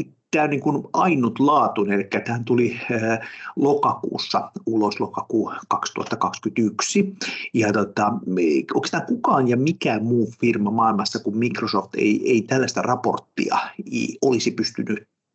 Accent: native